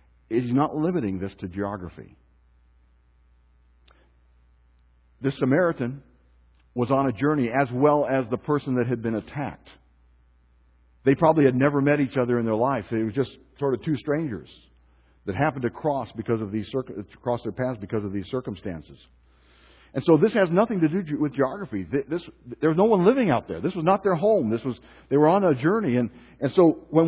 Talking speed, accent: 190 wpm, American